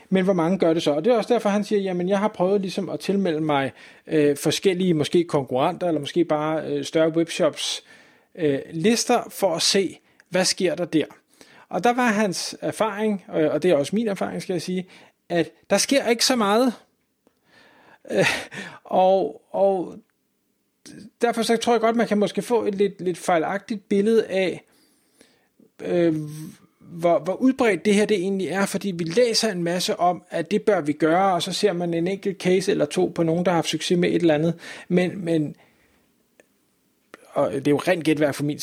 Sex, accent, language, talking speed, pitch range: male, native, Danish, 200 wpm, 160-200 Hz